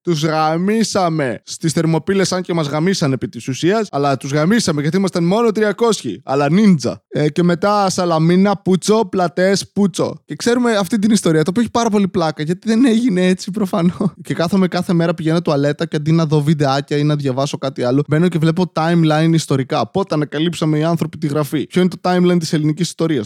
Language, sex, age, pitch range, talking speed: Greek, male, 20-39, 150-200 Hz, 200 wpm